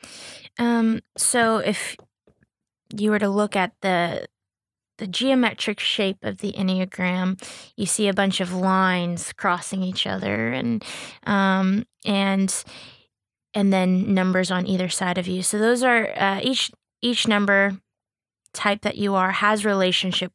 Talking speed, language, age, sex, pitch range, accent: 140 wpm, English, 20-39, female, 185-210 Hz, American